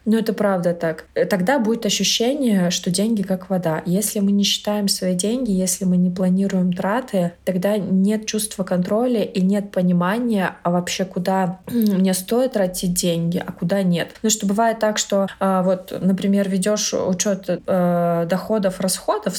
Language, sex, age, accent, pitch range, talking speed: Russian, female, 20-39, native, 175-210 Hz, 160 wpm